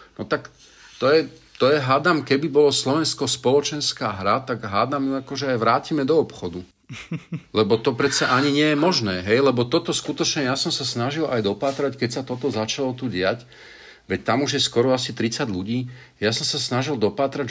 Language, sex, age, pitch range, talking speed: Slovak, male, 50-69, 115-150 Hz, 190 wpm